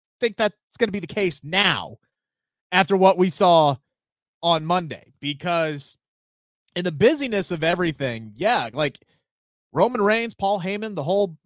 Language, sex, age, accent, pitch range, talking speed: English, male, 30-49, American, 145-190 Hz, 145 wpm